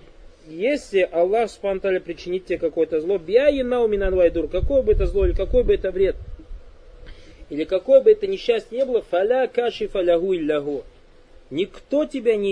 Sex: male